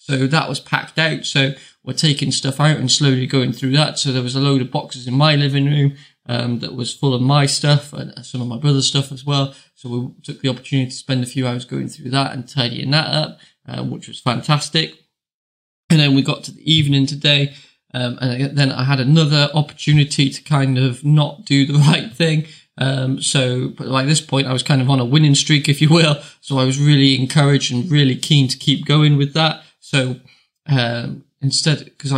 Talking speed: 220 wpm